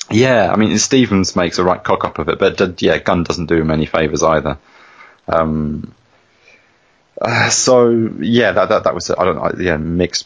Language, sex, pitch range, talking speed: English, male, 75-95 Hz, 185 wpm